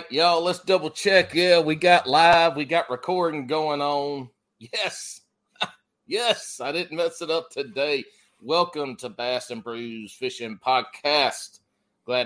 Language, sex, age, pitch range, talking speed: English, male, 30-49, 120-155 Hz, 140 wpm